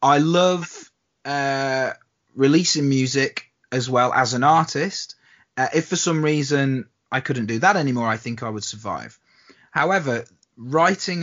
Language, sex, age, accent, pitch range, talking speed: English, male, 30-49, British, 125-180 Hz, 145 wpm